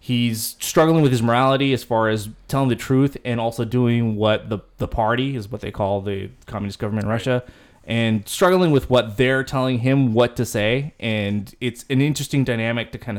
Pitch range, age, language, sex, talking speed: 110-130 Hz, 20-39, English, male, 200 wpm